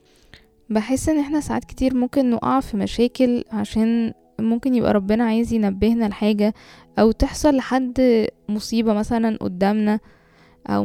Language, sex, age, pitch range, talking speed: Arabic, female, 10-29, 210-245 Hz, 125 wpm